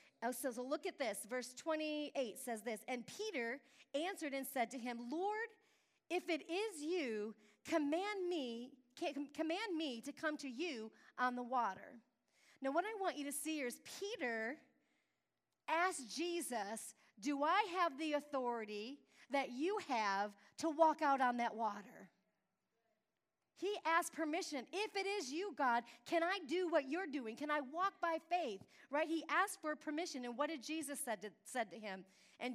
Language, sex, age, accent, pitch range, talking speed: English, female, 40-59, American, 250-345 Hz, 165 wpm